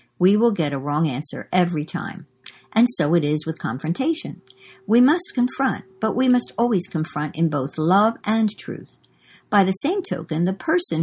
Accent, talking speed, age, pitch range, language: American, 180 wpm, 60-79, 150-210 Hz, English